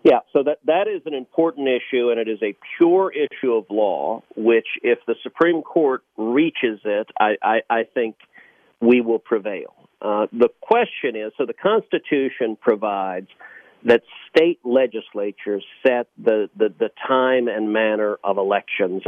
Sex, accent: male, American